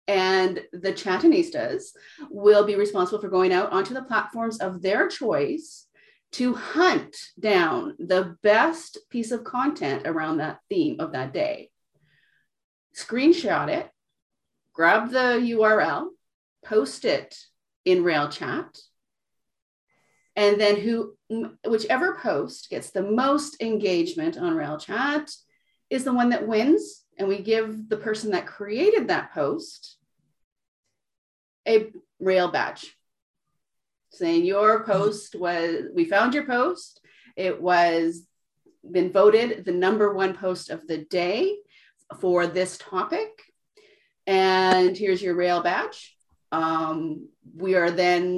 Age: 30-49